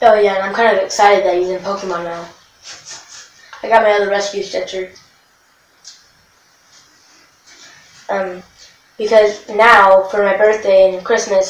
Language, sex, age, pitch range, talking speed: English, female, 10-29, 185-205 Hz, 135 wpm